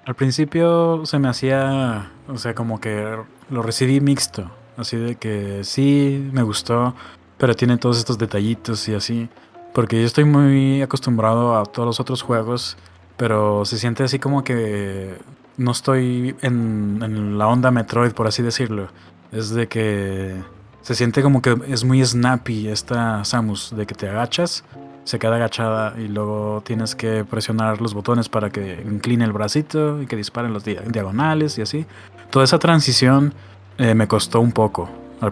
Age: 20-39